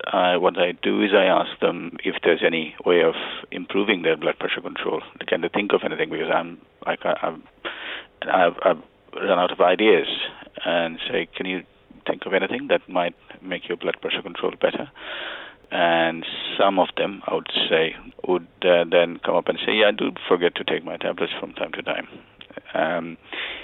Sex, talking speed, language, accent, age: male, 190 wpm, English, Indian, 50-69